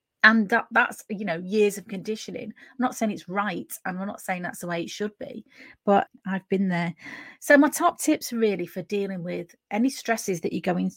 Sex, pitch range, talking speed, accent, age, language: female, 185-235 Hz, 220 wpm, British, 30-49, English